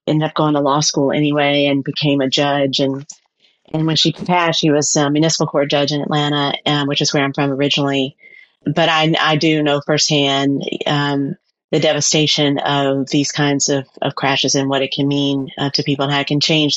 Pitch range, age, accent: 135-155 Hz, 30-49, American